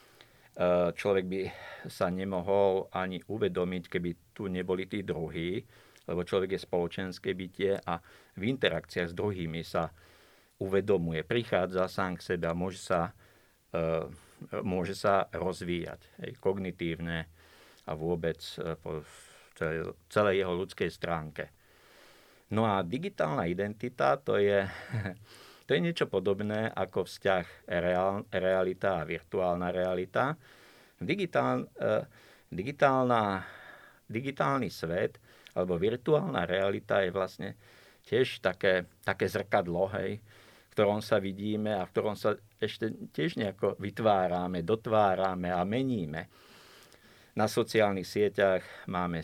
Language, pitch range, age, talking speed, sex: Slovak, 90-100 Hz, 50-69, 110 wpm, male